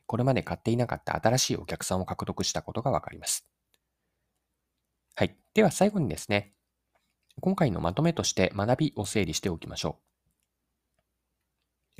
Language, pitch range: Japanese, 85-120 Hz